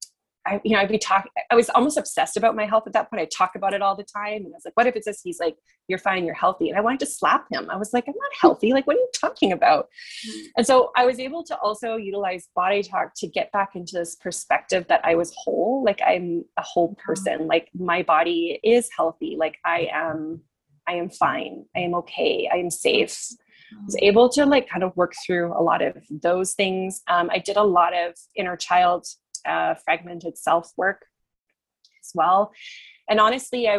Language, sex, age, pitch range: English, female, 20-39, 180-230 Hz